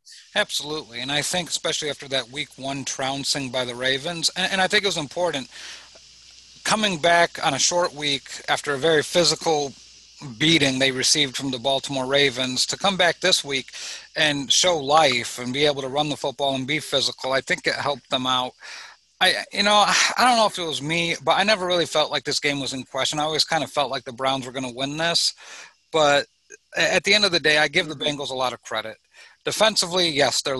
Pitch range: 130-160 Hz